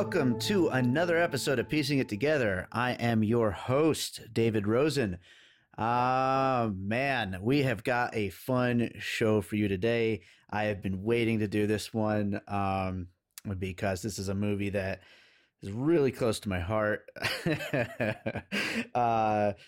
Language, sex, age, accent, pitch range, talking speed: English, male, 30-49, American, 100-120 Hz, 145 wpm